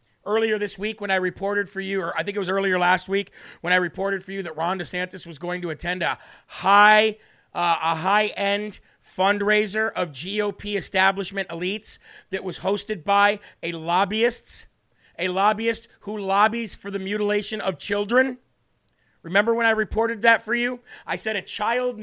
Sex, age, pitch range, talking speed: male, 40-59, 180-215 Hz, 175 wpm